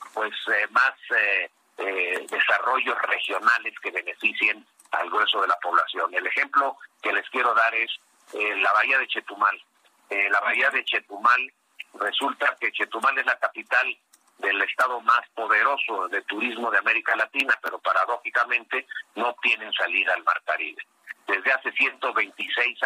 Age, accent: 50-69, Mexican